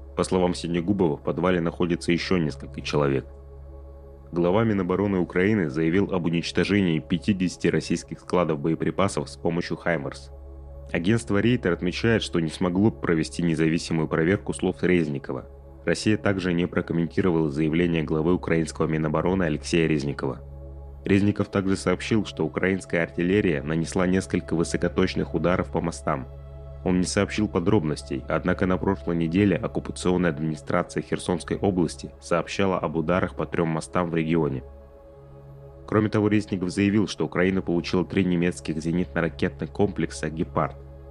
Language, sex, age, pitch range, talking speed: Russian, male, 30-49, 70-95 Hz, 125 wpm